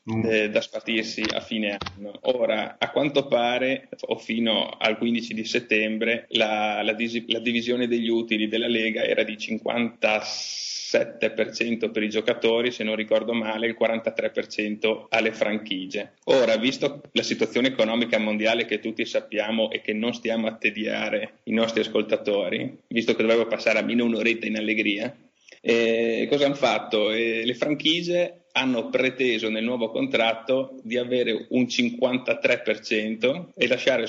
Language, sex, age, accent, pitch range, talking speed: Italian, male, 30-49, native, 110-120 Hz, 145 wpm